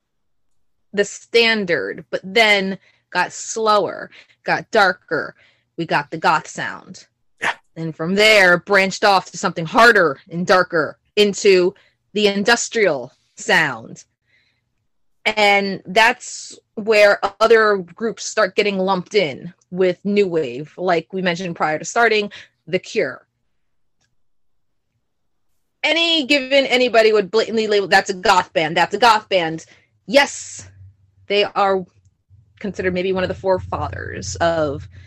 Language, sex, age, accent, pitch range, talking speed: English, female, 30-49, American, 165-225 Hz, 120 wpm